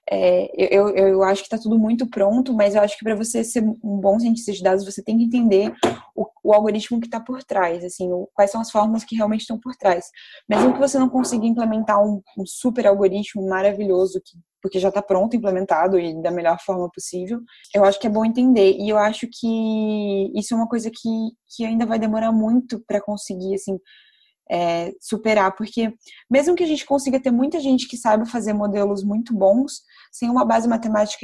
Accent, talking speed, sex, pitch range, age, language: Brazilian, 205 wpm, female, 195-230 Hz, 20-39, Portuguese